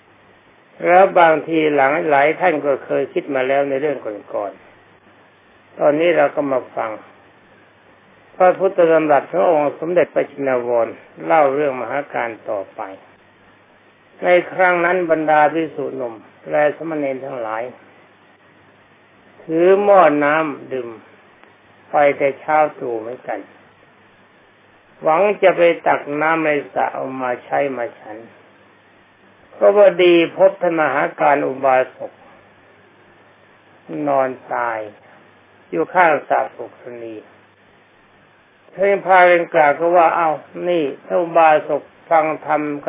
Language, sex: Thai, male